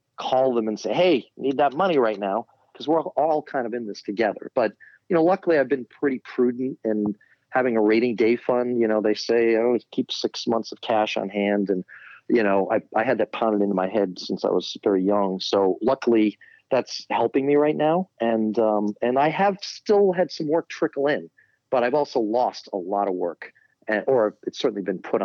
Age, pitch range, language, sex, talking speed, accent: 40-59, 110-150 Hz, English, male, 220 wpm, American